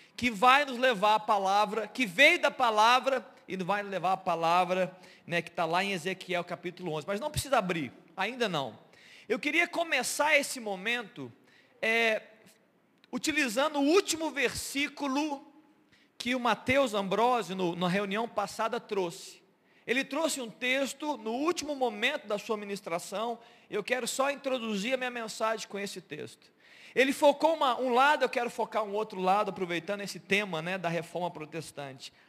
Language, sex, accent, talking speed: Portuguese, male, Brazilian, 155 wpm